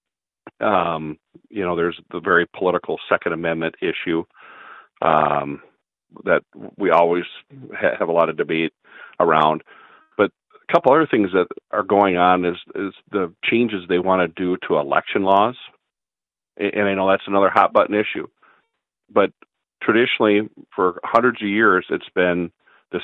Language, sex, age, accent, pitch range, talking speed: English, male, 50-69, American, 80-90 Hz, 150 wpm